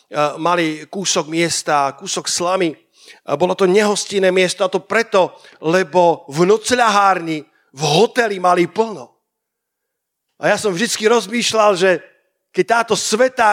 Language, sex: Slovak, male